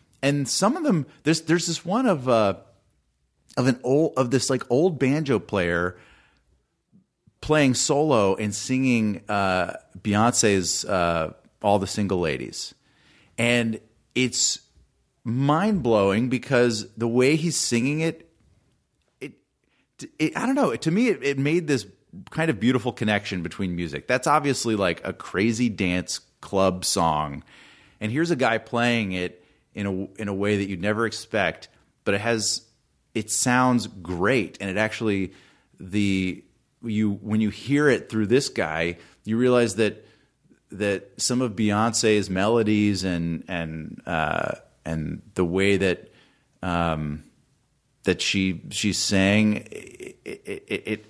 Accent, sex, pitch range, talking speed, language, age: American, male, 95-125 Hz, 140 wpm, English, 30-49